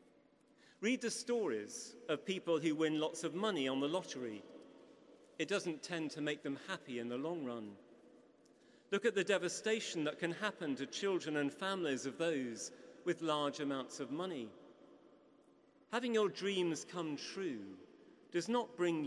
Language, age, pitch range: English, 40-59, 145-210 Hz